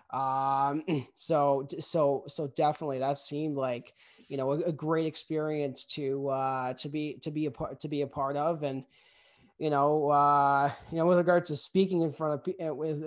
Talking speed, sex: 190 wpm, male